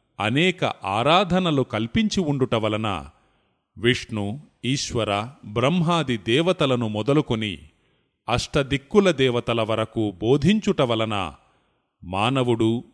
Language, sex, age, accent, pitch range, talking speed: Telugu, male, 30-49, native, 110-155 Hz, 65 wpm